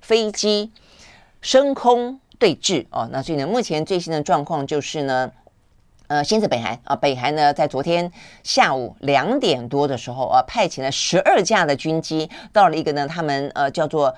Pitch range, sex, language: 135-175 Hz, female, Chinese